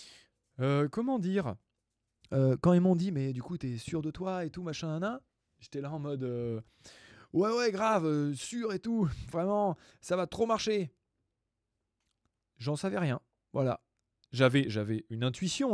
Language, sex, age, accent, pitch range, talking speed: English, male, 20-39, French, 110-175 Hz, 170 wpm